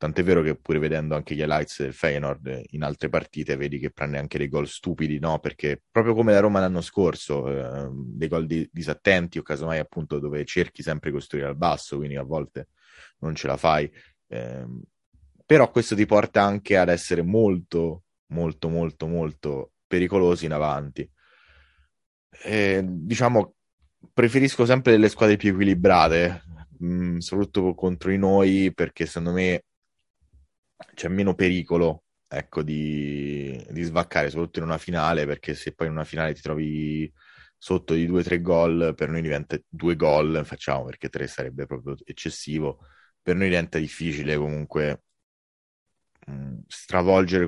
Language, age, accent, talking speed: Italian, 20-39, native, 155 wpm